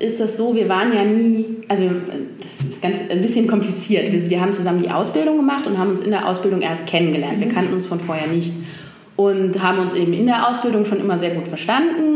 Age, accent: 20-39, German